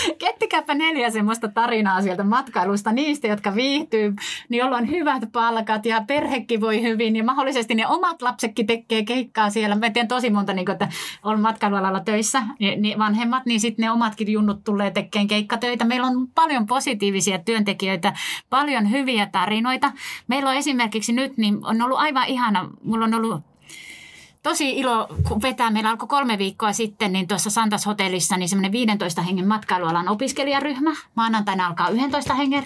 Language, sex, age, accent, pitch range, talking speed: Finnish, female, 30-49, native, 210-260 Hz, 155 wpm